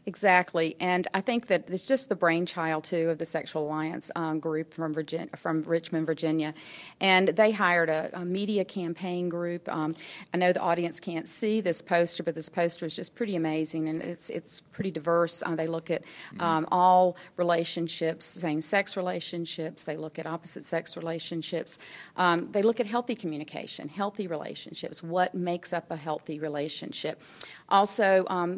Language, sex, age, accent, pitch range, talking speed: English, female, 40-59, American, 165-190 Hz, 170 wpm